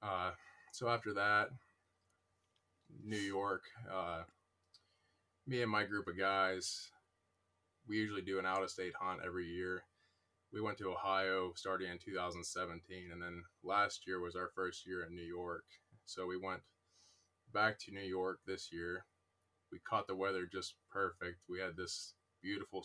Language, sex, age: English, male, 20-39